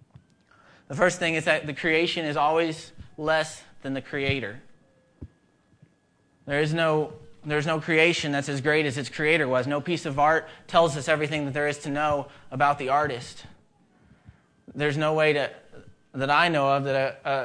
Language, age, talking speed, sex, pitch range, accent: English, 20-39, 180 wpm, male, 140-165 Hz, American